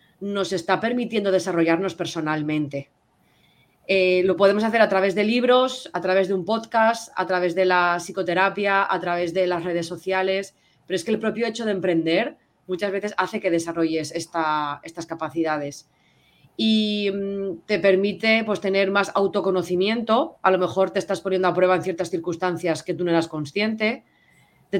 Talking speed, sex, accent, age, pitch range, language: 165 wpm, female, Spanish, 20-39, 175-205 Hz, Spanish